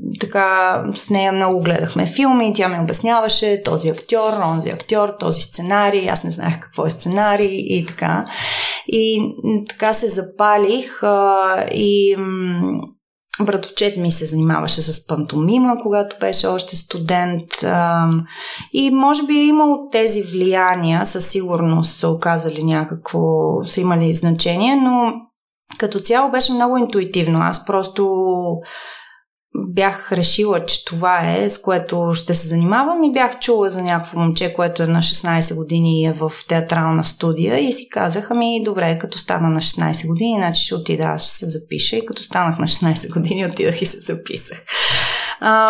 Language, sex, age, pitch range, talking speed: Bulgarian, female, 30-49, 165-220 Hz, 150 wpm